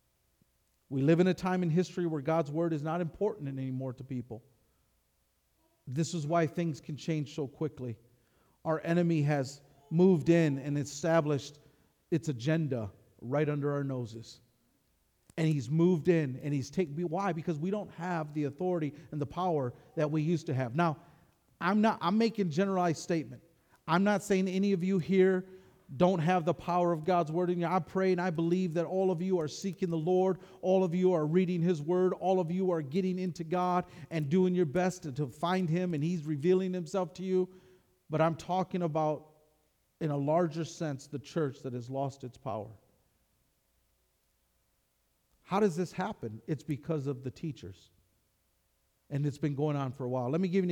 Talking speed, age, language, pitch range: 185 wpm, 40-59, English, 135-180 Hz